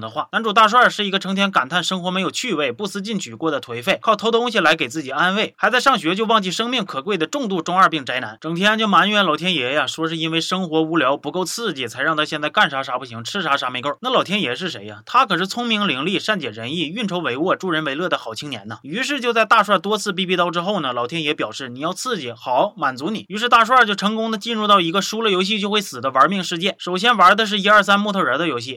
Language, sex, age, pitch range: Chinese, male, 20-39, 155-205 Hz